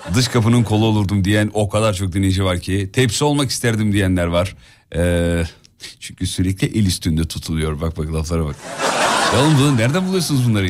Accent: native